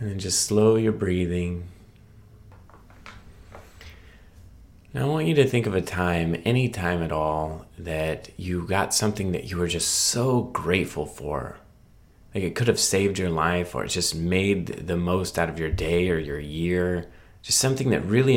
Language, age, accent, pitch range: English, 30-49, American, 85-105 Hz